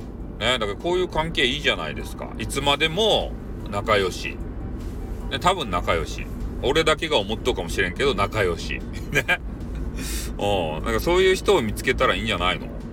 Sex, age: male, 40-59